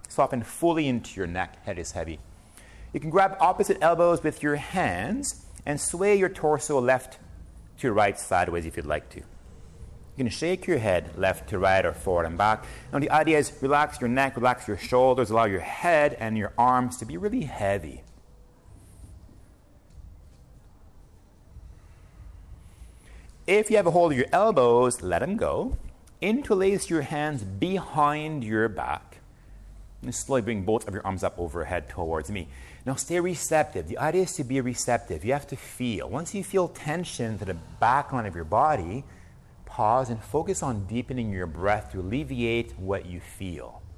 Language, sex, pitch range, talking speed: Hebrew, male, 90-145 Hz, 170 wpm